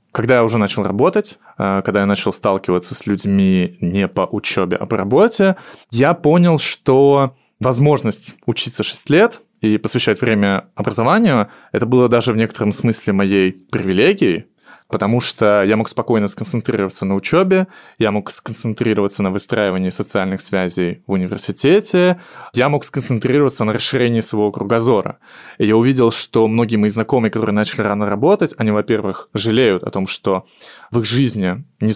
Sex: male